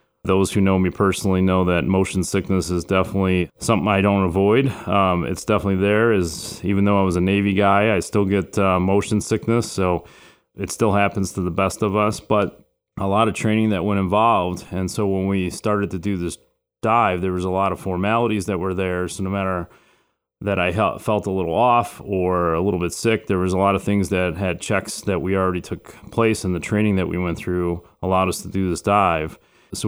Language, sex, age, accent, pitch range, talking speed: English, male, 30-49, American, 90-105 Hz, 220 wpm